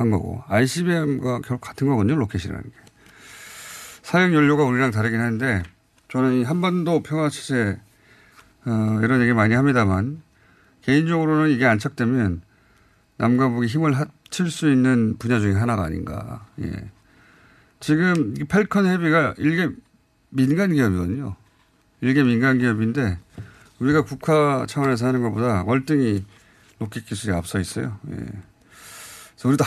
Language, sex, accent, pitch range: Korean, male, native, 105-140 Hz